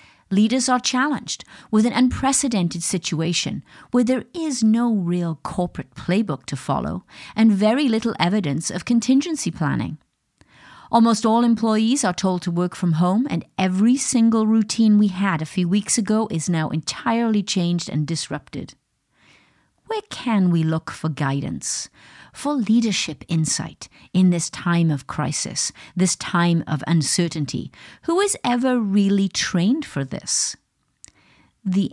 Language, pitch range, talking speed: English, 170-235 Hz, 140 wpm